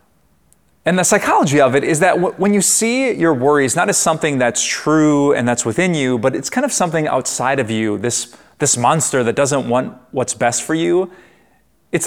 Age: 30-49